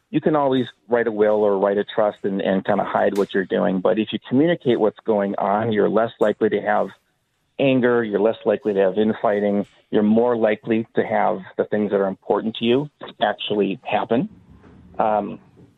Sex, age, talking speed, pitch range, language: male, 40-59, 200 wpm, 105-120 Hz, English